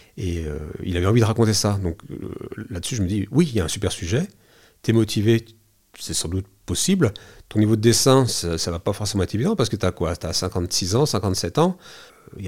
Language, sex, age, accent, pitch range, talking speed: French, male, 40-59, French, 90-115 Hz, 230 wpm